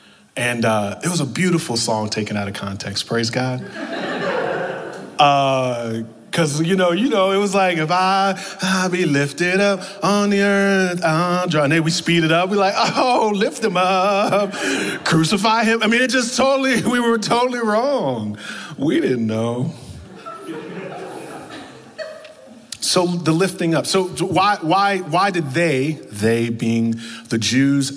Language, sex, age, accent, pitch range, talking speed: English, male, 30-49, American, 130-195 Hz, 155 wpm